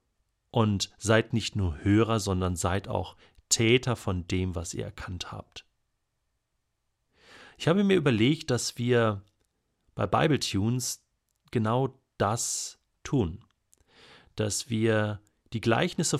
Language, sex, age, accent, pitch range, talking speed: German, male, 40-59, German, 105-140 Hz, 115 wpm